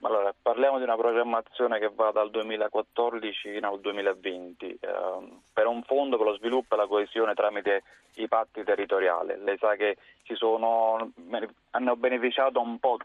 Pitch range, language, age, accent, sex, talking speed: 105-120 Hz, Italian, 30-49, native, male, 155 wpm